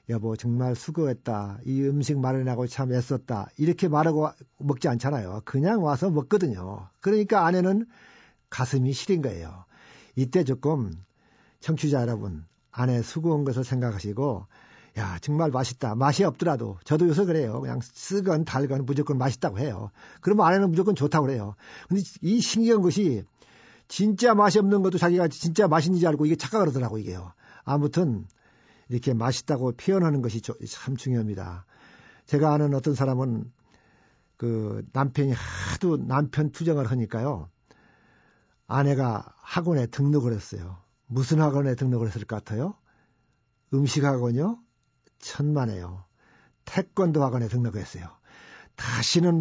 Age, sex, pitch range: 50-69, male, 120-160 Hz